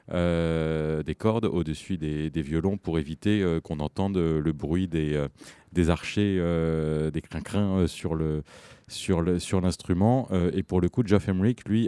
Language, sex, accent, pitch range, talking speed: French, male, French, 80-100 Hz, 180 wpm